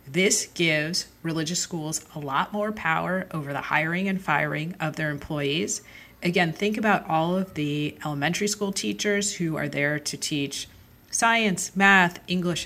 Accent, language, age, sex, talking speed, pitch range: American, English, 40-59, female, 155 wpm, 155-195 Hz